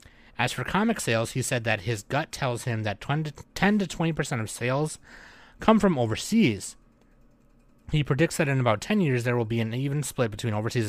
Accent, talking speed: American, 195 wpm